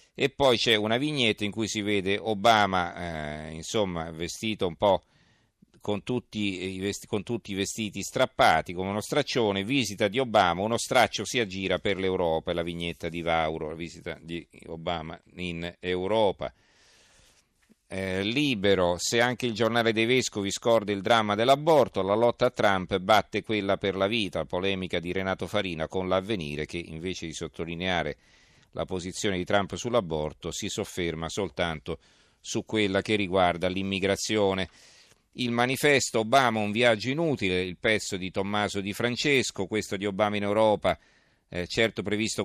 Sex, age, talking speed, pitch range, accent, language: male, 50-69, 155 wpm, 90-110 Hz, native, Italian